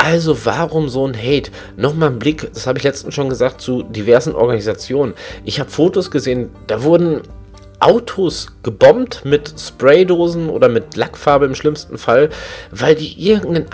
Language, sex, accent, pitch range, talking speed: German, male, German, 125-185 Hz, 155 wpm